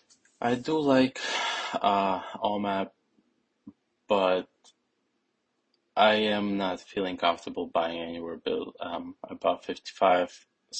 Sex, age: male, 20-39